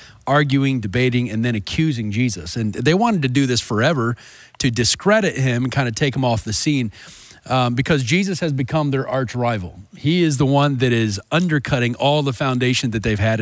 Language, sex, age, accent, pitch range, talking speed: English, male, 40-59, American, 115-145 Hz, 200 wpm